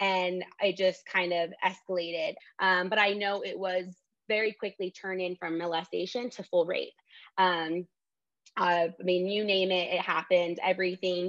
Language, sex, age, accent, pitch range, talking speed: English, female, 20-39, American, 180-210 Hz, 160 wpm